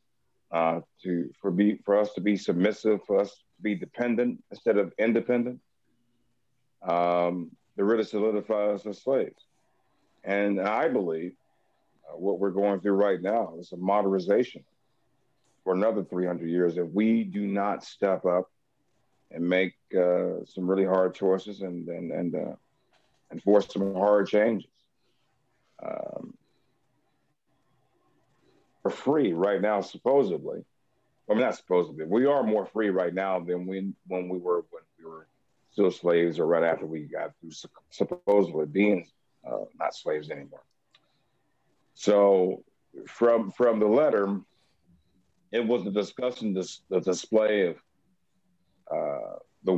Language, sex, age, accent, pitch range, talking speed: English, male, 50-69, American, 90-105 Hz, 140 wpm